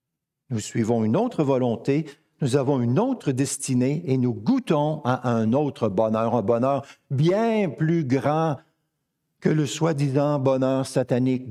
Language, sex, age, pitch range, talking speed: French, male, 60-79, 120-155 Hz, 140 wpm